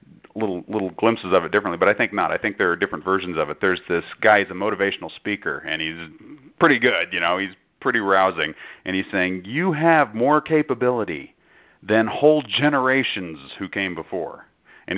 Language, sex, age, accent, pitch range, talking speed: English, male, 40-59, American, 95-130 Hz, 190 wpm